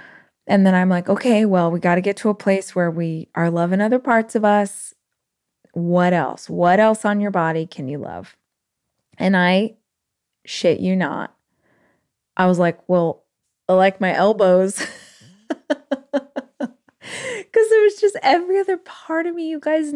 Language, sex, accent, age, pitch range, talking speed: English, female, American, 20-39, 180-230 Hz, 165 wpm